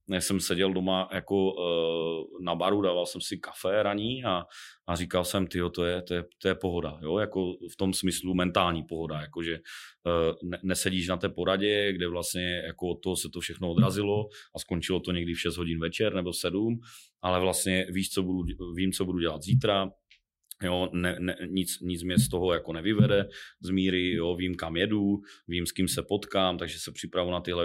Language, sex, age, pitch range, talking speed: Czech, male, 30-49, 85-95 Hz, 195 wpm